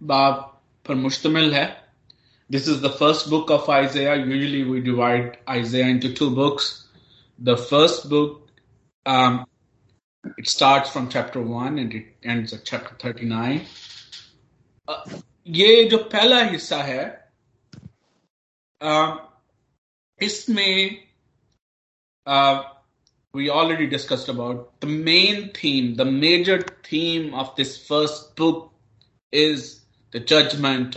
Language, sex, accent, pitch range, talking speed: Hindi, male, native, 125-155 Hz, 95 wpm